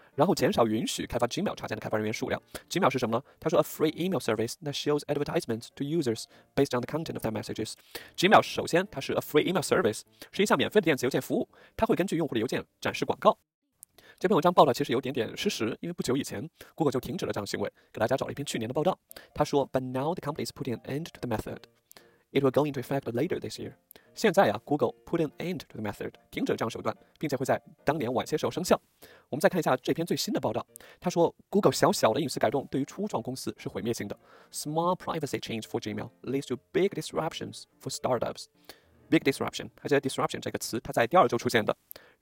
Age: 20-39